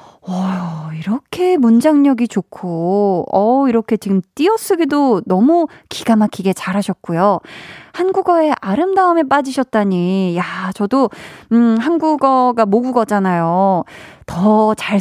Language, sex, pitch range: Korean, female, 195-275 Hz